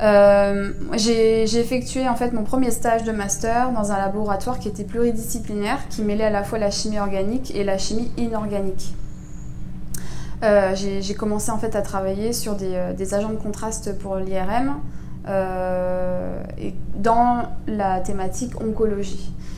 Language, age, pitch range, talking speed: French, 20-39, 190-220 Hz, 155 wpm